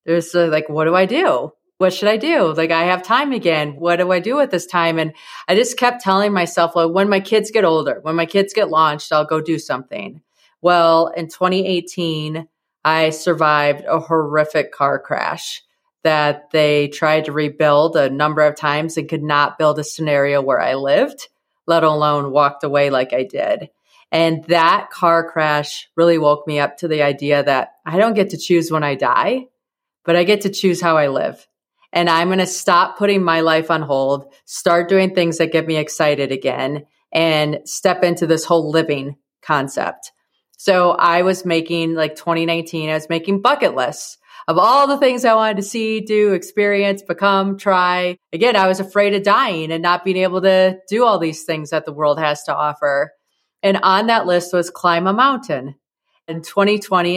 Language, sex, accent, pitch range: English, female, American, 155-190 Hz